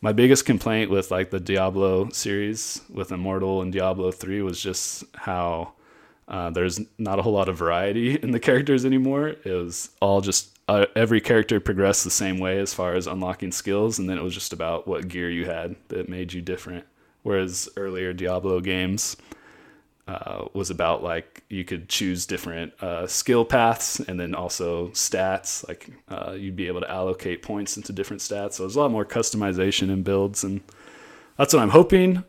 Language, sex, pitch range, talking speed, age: English, male, 95-110 Hz, 190 wpm, 20-39